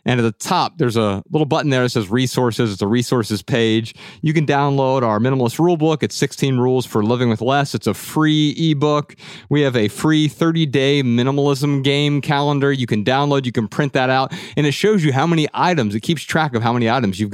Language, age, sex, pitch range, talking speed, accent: English, 30-49, male, 110-140 Hz, 230 wpm, American